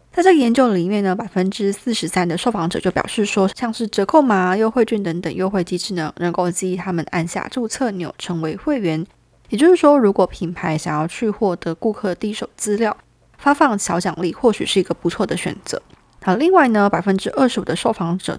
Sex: female